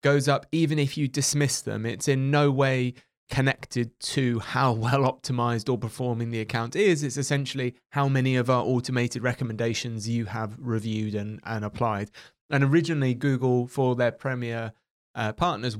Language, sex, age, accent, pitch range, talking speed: English, male, 20-39, British, 115-135 Hz, 165 wpm